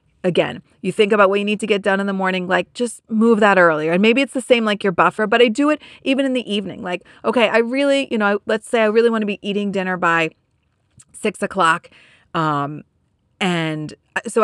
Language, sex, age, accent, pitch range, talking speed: English, female, 30-49, American, 190-240 Hz, 225 wpm